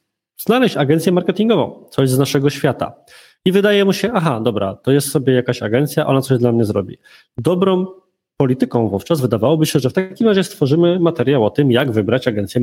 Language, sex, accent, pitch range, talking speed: Polish, male, native, 120-155 Hz, 185 wpm